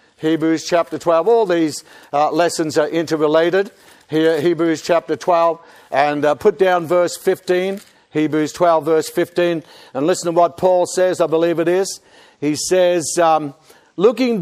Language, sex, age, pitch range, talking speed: English, male, 60-79, 165-210 Hz, 155 wpm